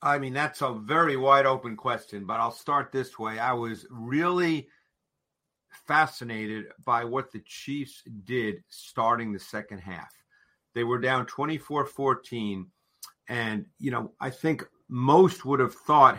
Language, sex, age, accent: English, male, 50-69, American